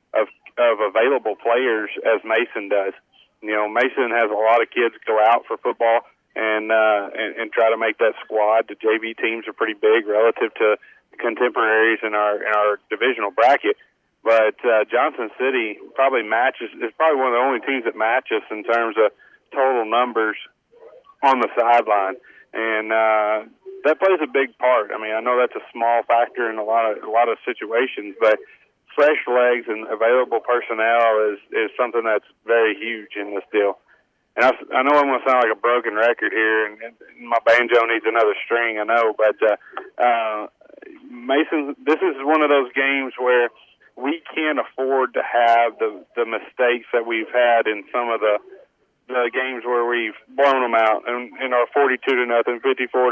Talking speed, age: 190 wpm, 40-59